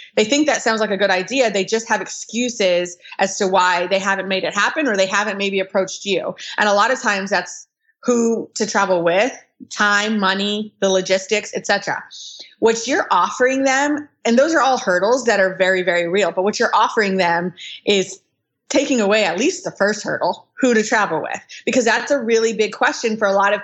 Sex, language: female, English